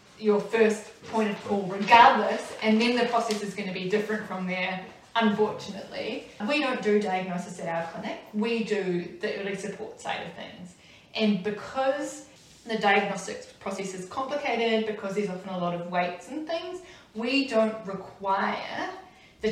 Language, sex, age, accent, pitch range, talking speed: English, female, 20-39, Australian, 190-230 Hz, 165 wpm